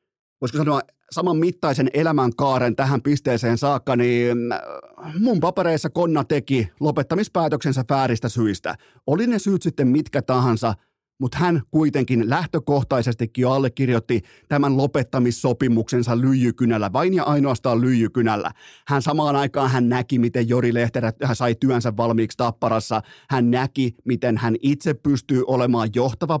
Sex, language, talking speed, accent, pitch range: male, Finnish, 125 wpm, native, 125-165 Hz